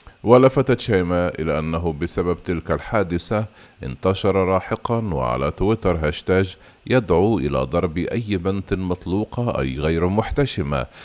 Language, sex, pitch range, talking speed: Arabic, male, 85-105 Hz, 115 wpm